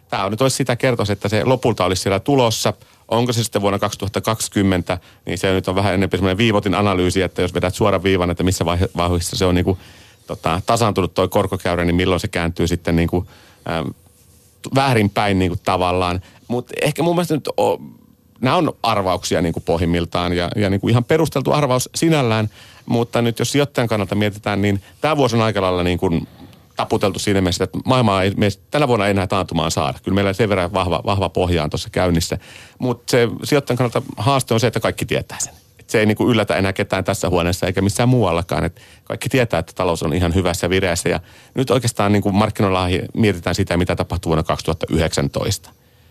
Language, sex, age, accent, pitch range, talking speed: Finnish, male, 30-49, native, 90-115 Hz, 195 wpm